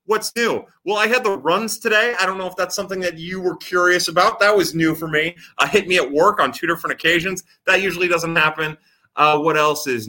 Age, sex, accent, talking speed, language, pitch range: 30-49, male, American, 245 wpm, English, 150-190 Hz